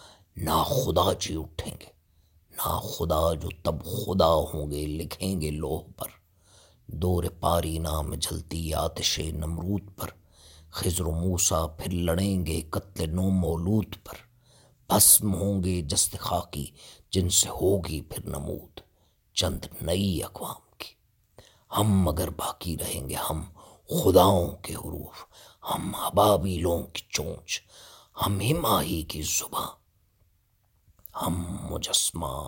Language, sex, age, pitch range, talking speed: English, male, 50-69, 80-100 Hz, 120 wpm